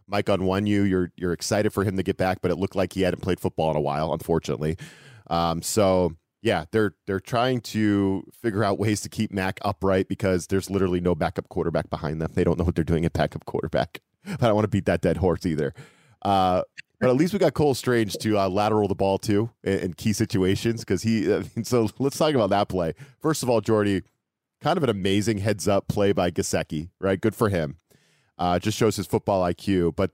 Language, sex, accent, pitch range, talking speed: English, male, American, 95-110 Hz, 225 wpm